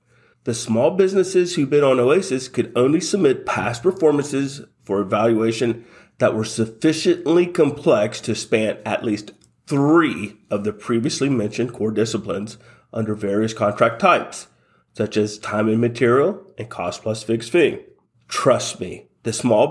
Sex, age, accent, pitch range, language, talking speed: male, 40-59, American, 110-155 Hz, English, 145 wpm